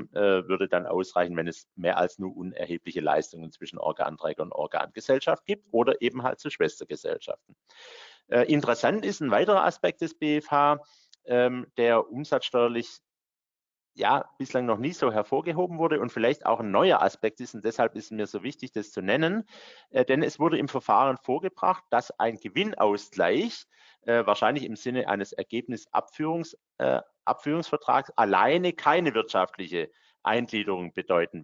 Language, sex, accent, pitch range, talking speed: German, male, German, 110-155 Hz, 140 wpm